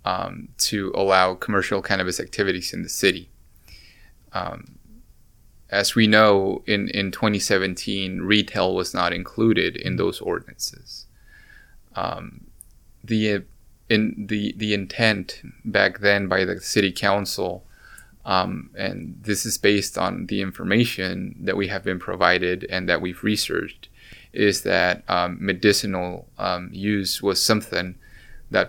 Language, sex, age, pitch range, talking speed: English, male, 20-39, 95-105 Hz, 130 wpm